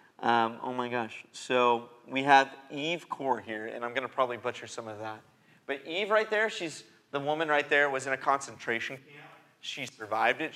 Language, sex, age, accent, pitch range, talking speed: English, male, 30-49, American, 125-160 Hz, 205 wpm